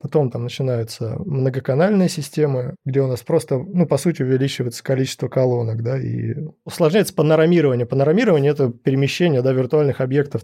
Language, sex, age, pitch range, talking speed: Russian, male, 20-39, 125-155 Hz, 150 wpm